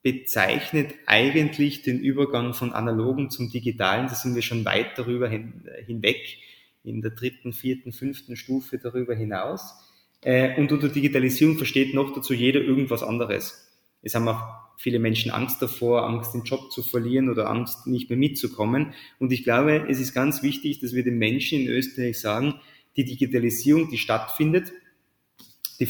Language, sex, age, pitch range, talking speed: German, male, 20-39, 120-140 Hz, 160 wpm